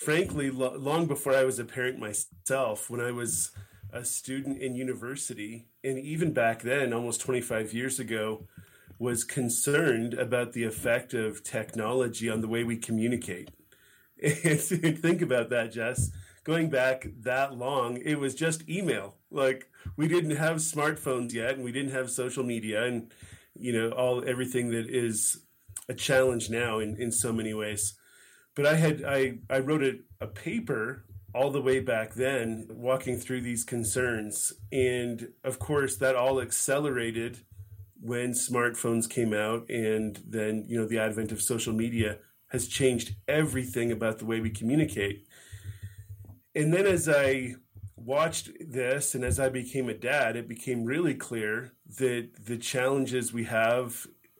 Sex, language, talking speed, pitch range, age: male, English, 155 wpm, 110-130 Hz, 30-49